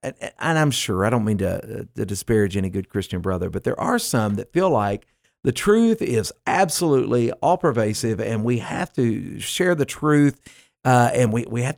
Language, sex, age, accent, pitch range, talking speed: English, male, 50-69, American, 95-130 Hz, 190 wpm